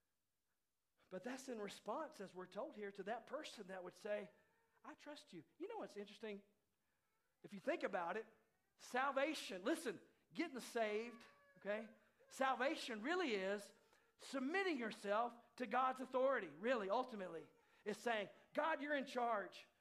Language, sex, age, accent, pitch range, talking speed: English, male, 50-69, American, 195-250 Hz, 140 wpm